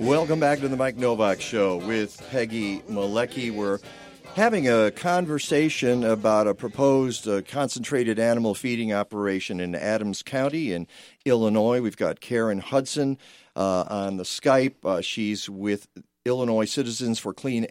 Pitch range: 105-130 Hz